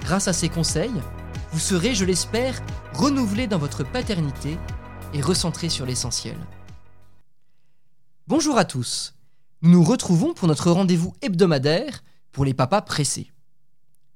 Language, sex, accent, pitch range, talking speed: French, male, French, 145-185 Hz, 125 wpm